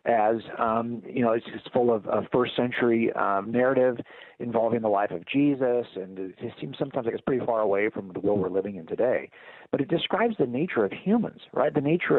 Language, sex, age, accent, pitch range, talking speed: English, male, 50-69, American, 110-150 Hz, 220 wpm